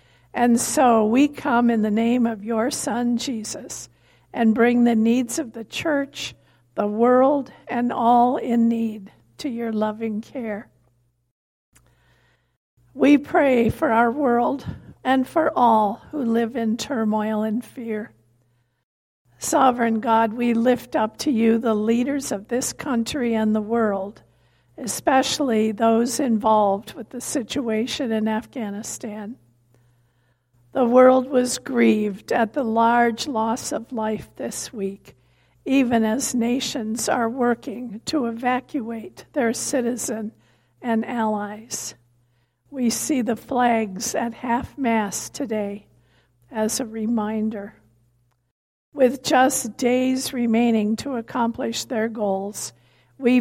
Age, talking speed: 50-69, 120 wpm